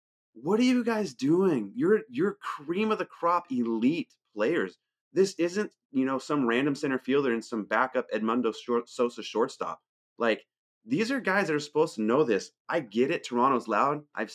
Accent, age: American, 30-49